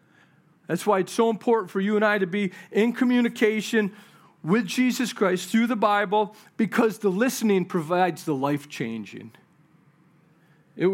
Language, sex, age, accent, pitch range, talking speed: English, male, 40-59, American, 180-235 Hz, 145 wpm